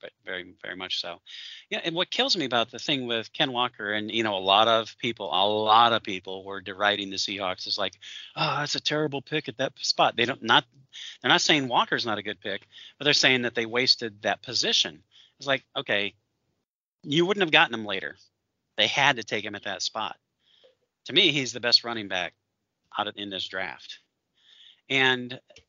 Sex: male